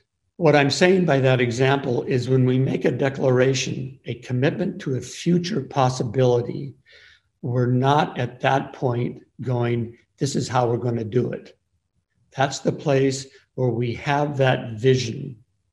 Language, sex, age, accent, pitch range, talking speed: English, male, 60-79, American, 125-140 Hz, 155 wpm